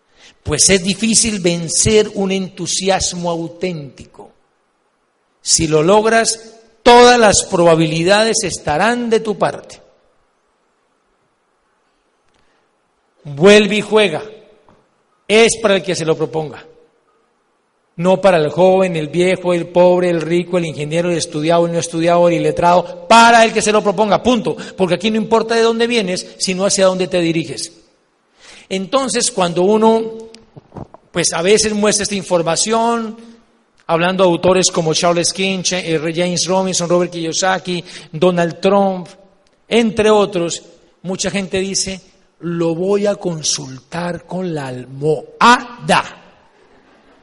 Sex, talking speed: male, 125 wpm